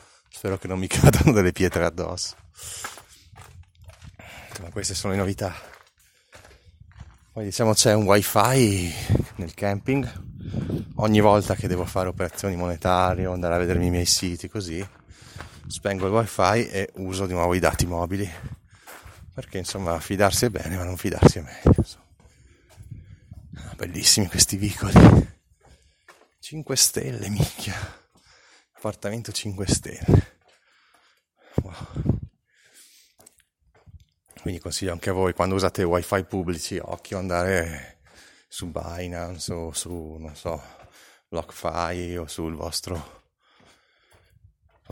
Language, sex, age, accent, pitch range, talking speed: Italian, male, 30-49, native, 85-100 Hz, 115 wpm